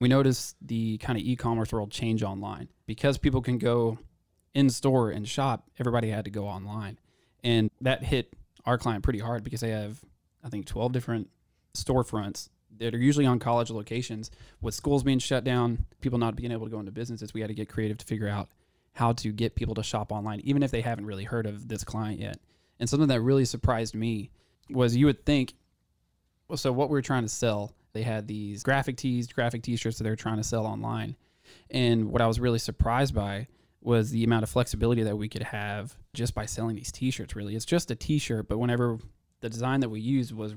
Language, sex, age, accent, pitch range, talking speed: English, male, 20-39, American, 110-125 Hz, 215 wpm